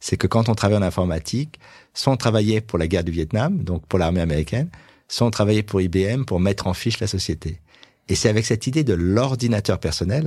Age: 50-69